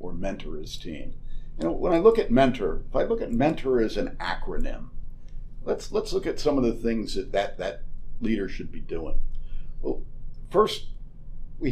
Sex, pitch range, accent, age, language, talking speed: male, 115-155 Hz, American, 50-69, English, 190 wpm